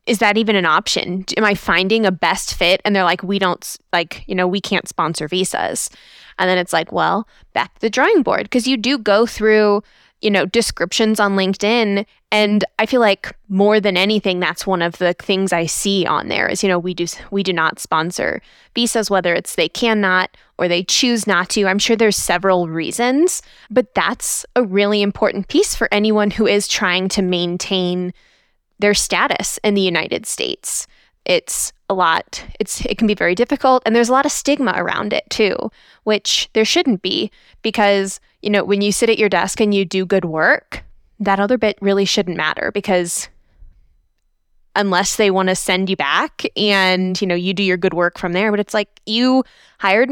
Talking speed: 200 wpm